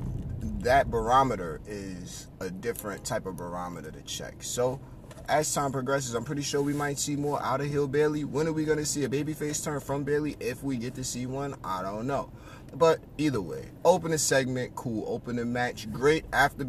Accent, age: American, 30-49